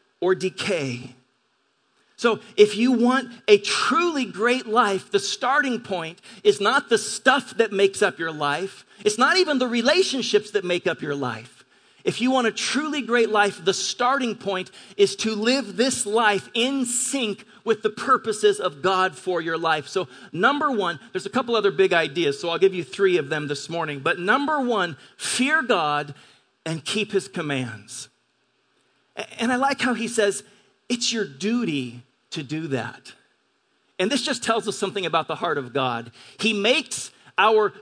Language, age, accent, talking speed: English, 40-59, American, 175 wpm